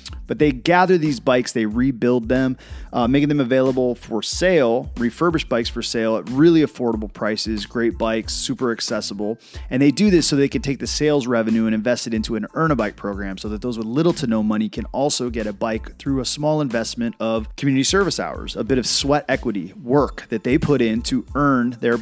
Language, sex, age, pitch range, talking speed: English, male, 30-49, 115-140 Hz, 220 wpm